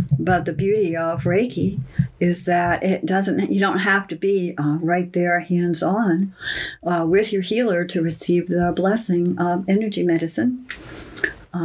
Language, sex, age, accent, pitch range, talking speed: English, female, 60-79, American, 165-195 Hz, 145 wpm